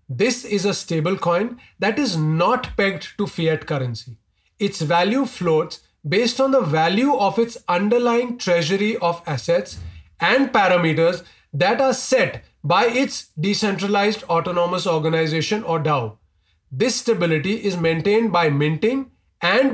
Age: 30-49